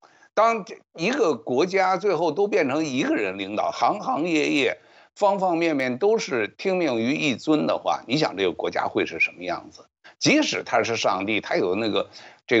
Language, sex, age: Chinese, male, 60-79